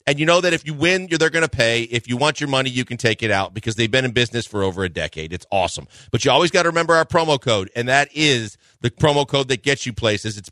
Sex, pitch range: male, 115-150 Hz